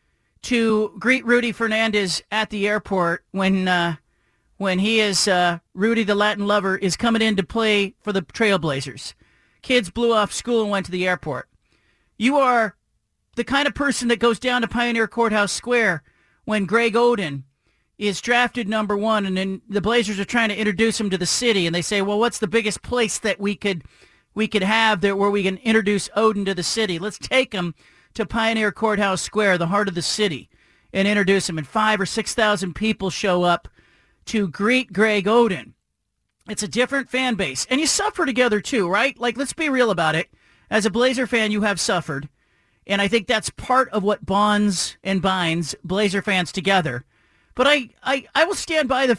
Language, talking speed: English, 195 wpm